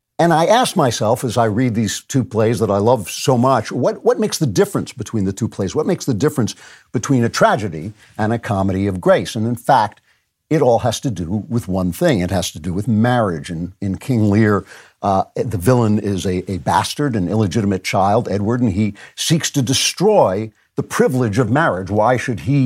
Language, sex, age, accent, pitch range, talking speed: English, male, 60-79, American, 105-130 Hz, 210 wpm